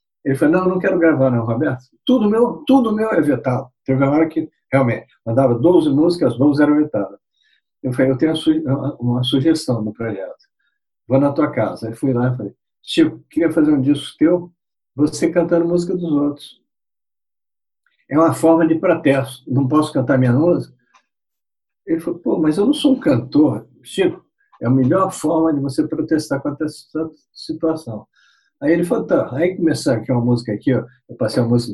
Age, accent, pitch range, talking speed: 60-79, Brazilian, 125-160 Hz, 185 wpm